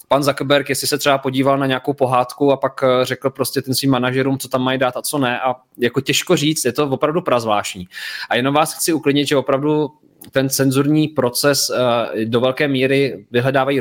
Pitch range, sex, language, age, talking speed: 120-140 Hz, male, Czech, 20-39, 190 wpm